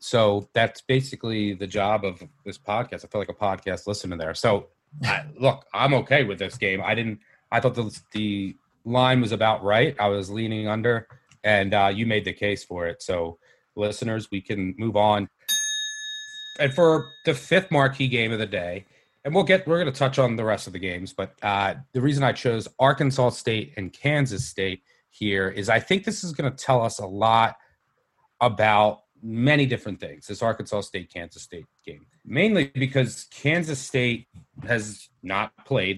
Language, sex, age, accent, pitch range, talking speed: English, male, 30-49, American, 100-135 Hz, 185 wpm